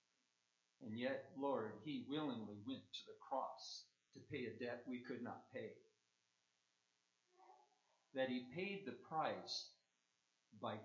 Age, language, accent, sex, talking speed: 50-69, English, American, male, 125 wpm